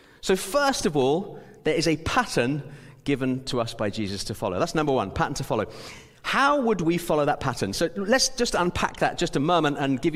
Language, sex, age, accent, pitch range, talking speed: English, male, 30-49, British, 140-205 Hz, 220 wpm